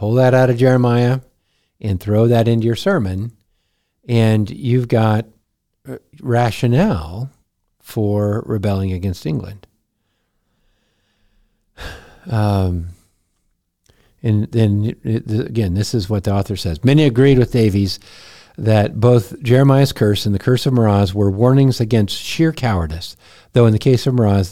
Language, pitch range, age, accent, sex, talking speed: English, 100-130 Hz, 50-69, American, male, 130 wpm